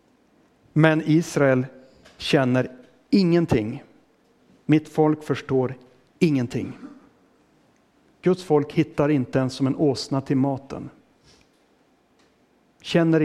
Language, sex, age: Swedish, male, 60-79